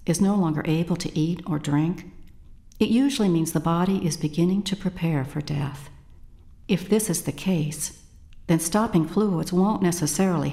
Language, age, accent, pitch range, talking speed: English, 60-79, American, 155-200 Hz, 165 wpm